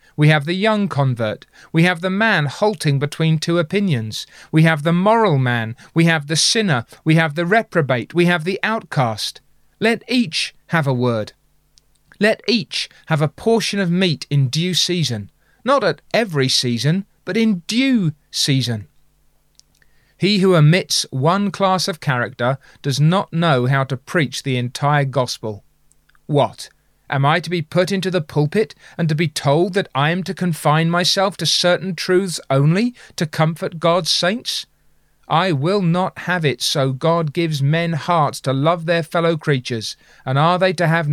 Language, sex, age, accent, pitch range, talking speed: English, male, 30-49, British, 145-190 Hz, 170 wpm